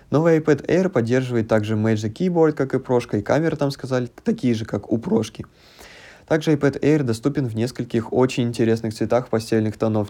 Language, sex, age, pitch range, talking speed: Russian, male, 20-39, 110-135 Hz, 180 wpm